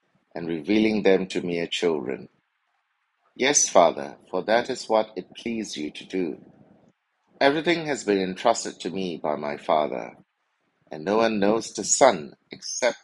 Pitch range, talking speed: 90-115 Hz, 150 wpm